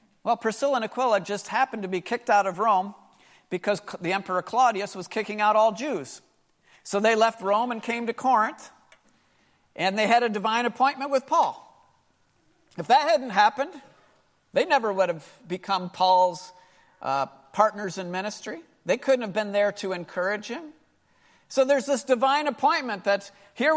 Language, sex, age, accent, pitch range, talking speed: English, male, 50-69, American, 195-260 Hz, 165 wpm